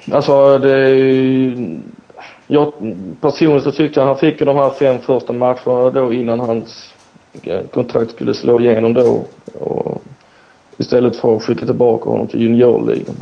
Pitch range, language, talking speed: 120-130 Hz, Swedish, 145 wpm